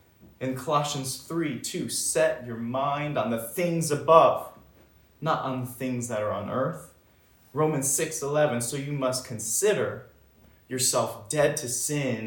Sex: male